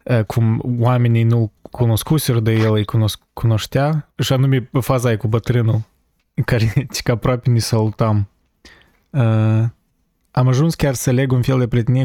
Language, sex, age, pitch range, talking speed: Romanian, male, 20-39, 115-135 Hz, 140 wpm